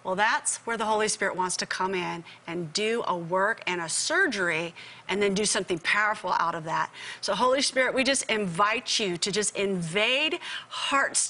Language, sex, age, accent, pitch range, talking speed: English, female, 40-59, American, 205-260 Hz, 190 wpm